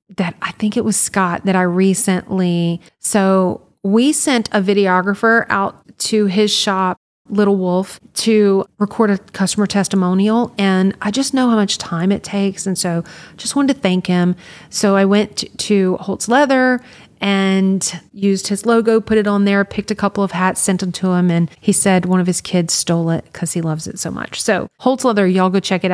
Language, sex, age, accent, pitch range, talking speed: English, female, 30-49, American, 185-215 Hz, 200 wpm